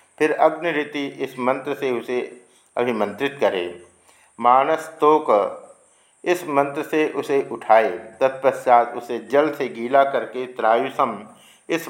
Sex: male